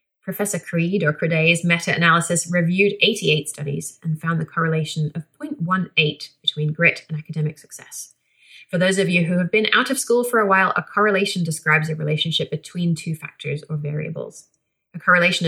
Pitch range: 155-180 Hz